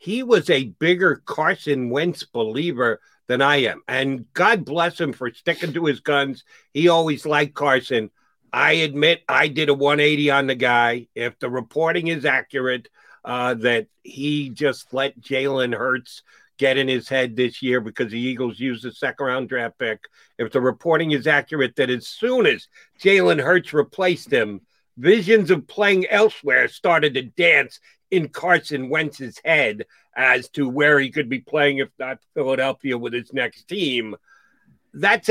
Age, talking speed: 60-79, 165 wpm